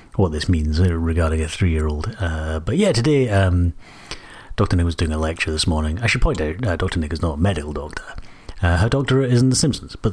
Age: 30-49